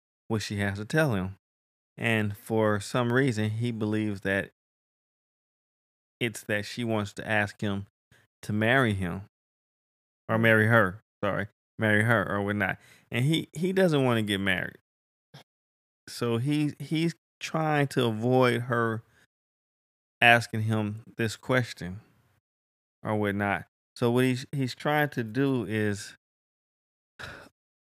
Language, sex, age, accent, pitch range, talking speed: English, male, 20-39, American, 100-130 Hz, 130 wpm